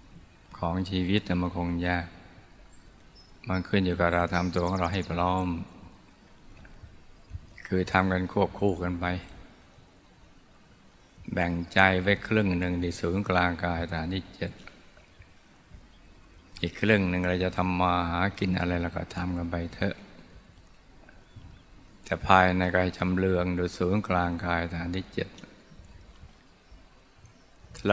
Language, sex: Thai, male